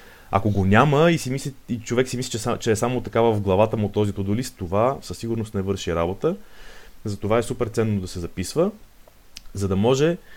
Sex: male